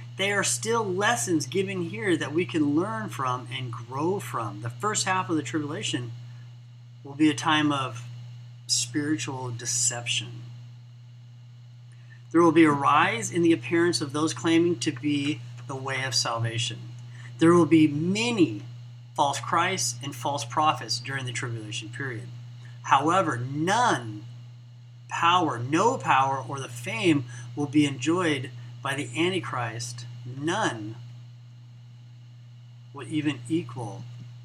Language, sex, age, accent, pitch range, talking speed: English, male, 30-49, American, 120-150 Hz, 130 wpm